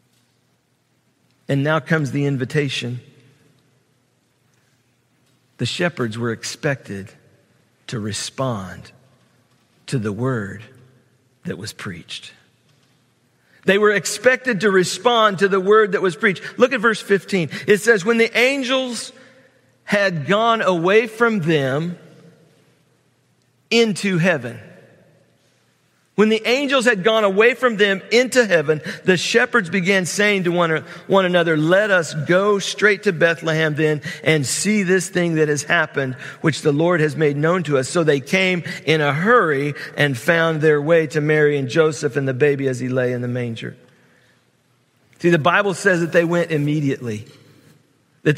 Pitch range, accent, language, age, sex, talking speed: 135-200 Hz, American, English, 50-69, male, 145 wpm